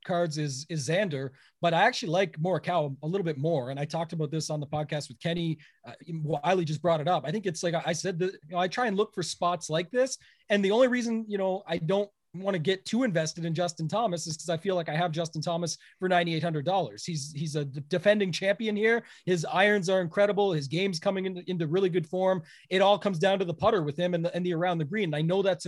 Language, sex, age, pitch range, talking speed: English, male, 30-49, 165-195 Hz, 260 wpm